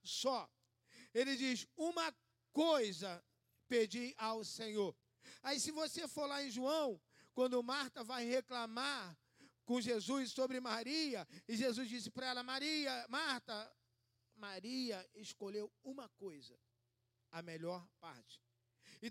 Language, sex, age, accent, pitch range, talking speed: Portuguese, male, 50-69, Brazilian, 185-290 Hz, 120 wpm